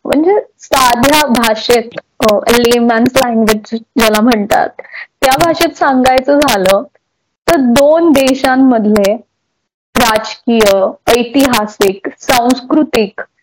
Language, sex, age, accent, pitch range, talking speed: Marathi, female, 20-39, native, 225-275 Hz, 75 wpm